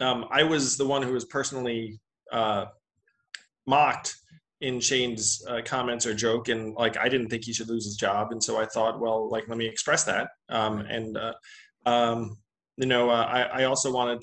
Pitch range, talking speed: 115-140 Hz, 200 wpm